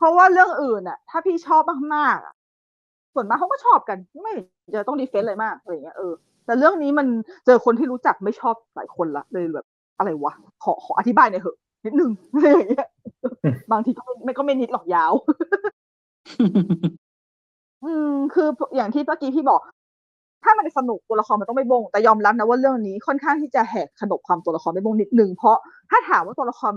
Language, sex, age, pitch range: Thai, female, 20-39, 205-300 Hz